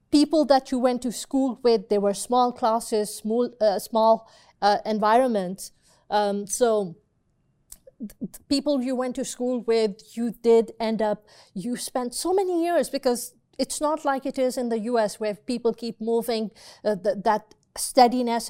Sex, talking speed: female, 165 wpm